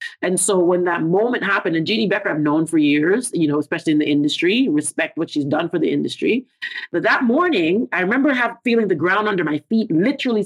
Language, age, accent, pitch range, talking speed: English, 40-59, American, 150-225 Hz, 220 wpm